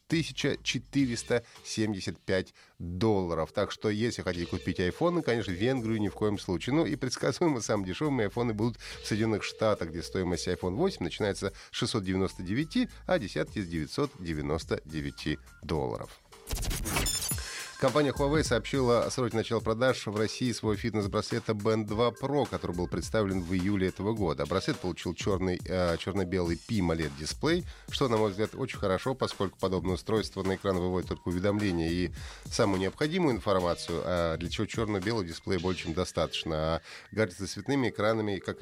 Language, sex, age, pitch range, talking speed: Russian, male, 30-49, 90-125 Hz, 150 wpm